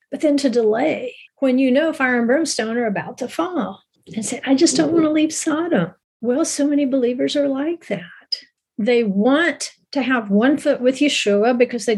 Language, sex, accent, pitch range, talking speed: English, female, American, 220-285 Hz, 200 wpm